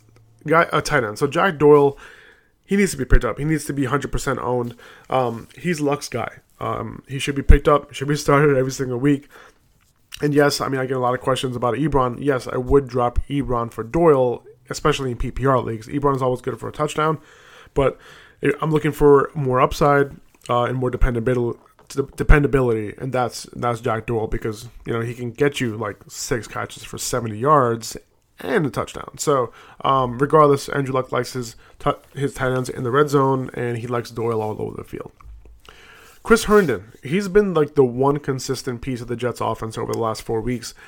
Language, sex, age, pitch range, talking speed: English, male, 20-39, 120-145 Hz, 205 wpm